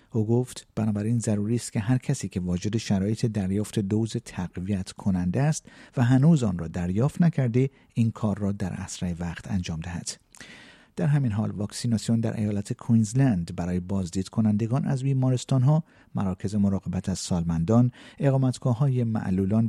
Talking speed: 150 wpm